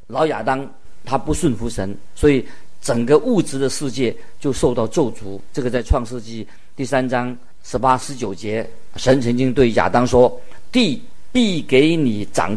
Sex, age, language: male, 50-69, Chinese